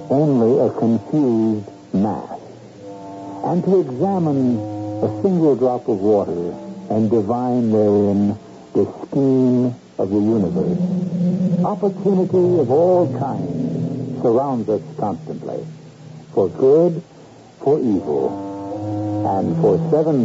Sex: male